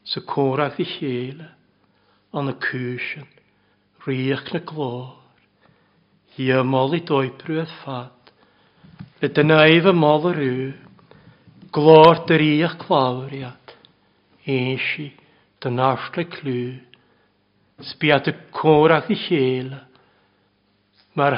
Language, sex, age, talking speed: English, male, 60-79, 80 wpm